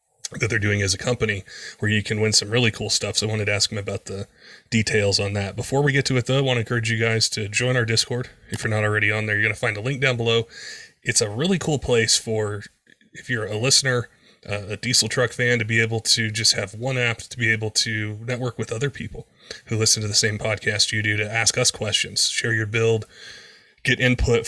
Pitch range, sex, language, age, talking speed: 105-120 Hz, male, English, 20-39, 255 wpm